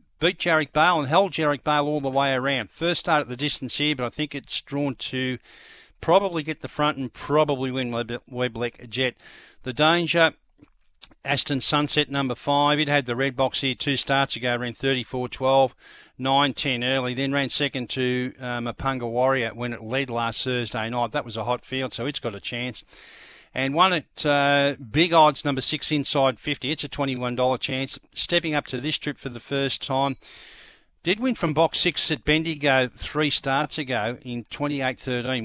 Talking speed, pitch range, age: 185 wpm, 125-145 Hz, 50-69